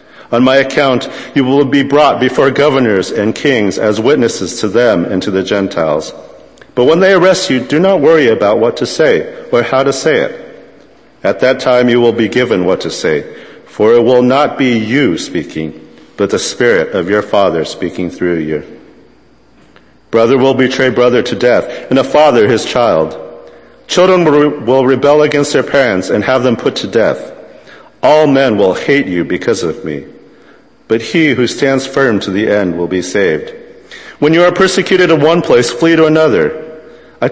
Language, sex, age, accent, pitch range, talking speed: English, male, 50-69, American, 110-155 Hz, 185 wpm